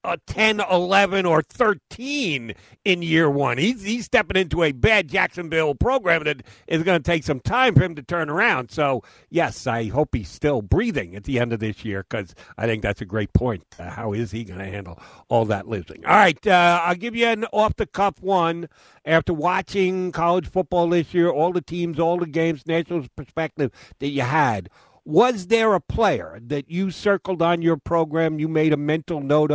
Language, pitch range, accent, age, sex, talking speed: English, 140-180 Hz, American, 60-79, male, 200 wpm